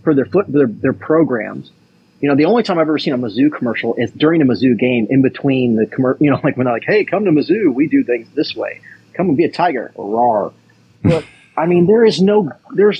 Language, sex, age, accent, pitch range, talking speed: English, male, 30-49, American, 125-175 Hz, 250 wpm